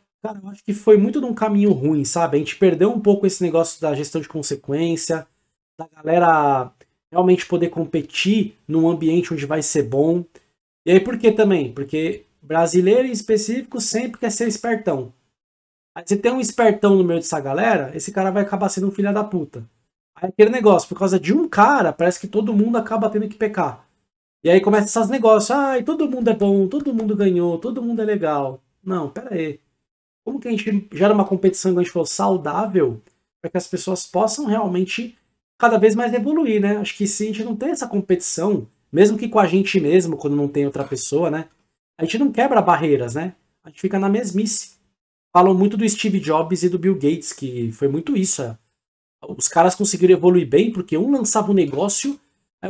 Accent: Brazilian